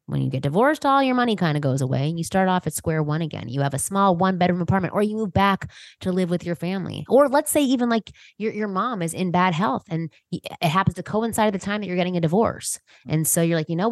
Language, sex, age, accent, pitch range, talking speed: English, female, 20-39, American, 150-205 Hz, 280 wpm